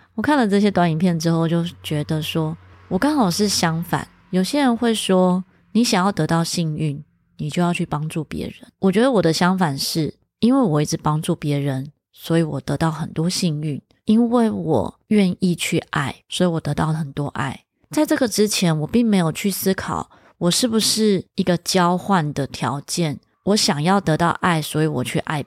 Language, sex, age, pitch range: Chinese, female, 20-39, 155-200 Hz